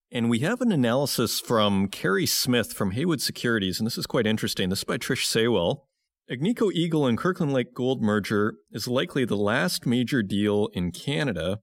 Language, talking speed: English, 185 wpm